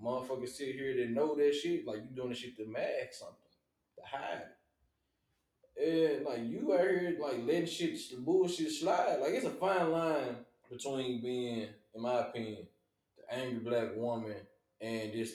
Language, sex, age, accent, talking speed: English, male, 20-39, American, 170 wpm